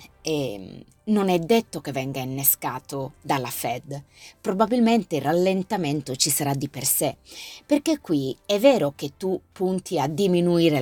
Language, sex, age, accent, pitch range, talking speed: Italian, female, 30-49, native, 145-225 Hz, 145 wpm